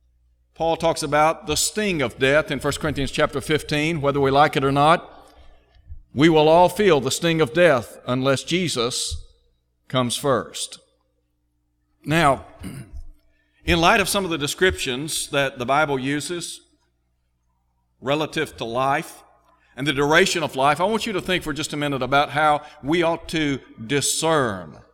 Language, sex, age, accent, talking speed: English, male, 50-69, American, 155 wpm